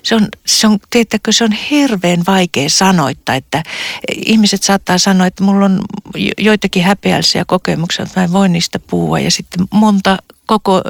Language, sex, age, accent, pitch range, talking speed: Finnish, female, 50-69, native, 180-220 Hz, 160 wpm